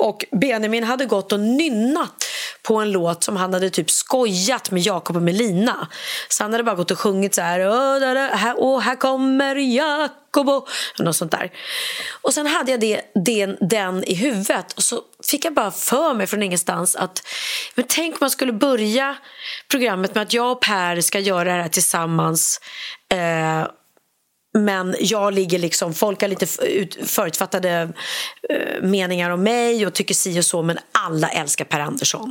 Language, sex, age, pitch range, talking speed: Swedish, female, 30-49, 180-265 Hz, 170 wpm